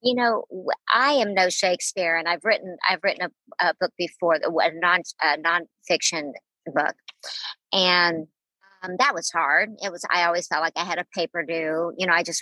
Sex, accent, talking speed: male, American, 195 wpm